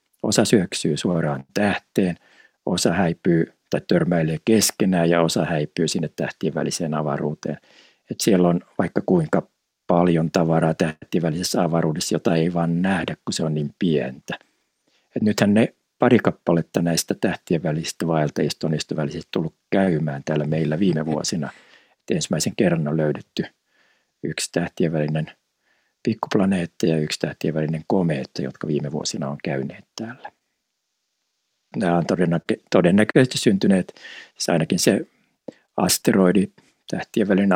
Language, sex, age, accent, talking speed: Finnish, male, 60-79, native, 130 wpm